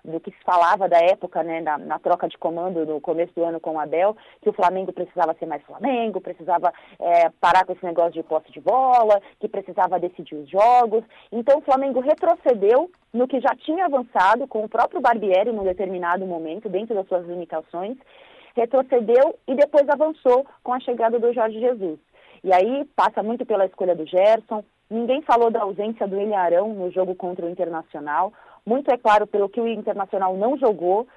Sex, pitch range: female, 190-255 Hz